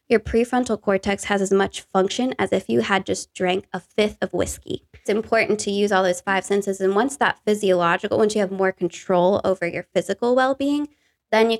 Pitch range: 185-225 Hz